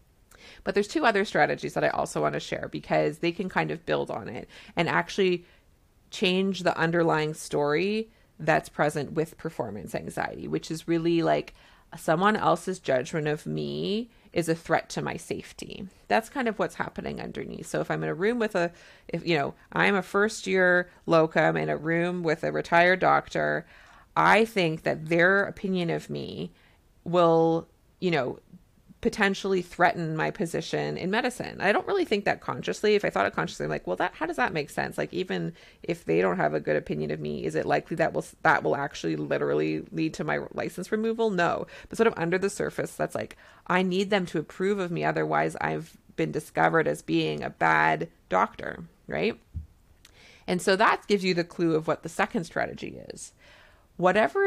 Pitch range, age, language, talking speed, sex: 155-200 Hz, 30-49, English, 195 wpm, female